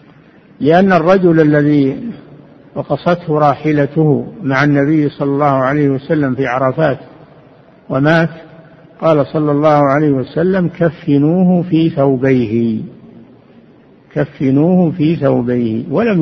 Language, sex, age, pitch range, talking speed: Arabic, male, 60-79, 135-165 Hz, 95 wpm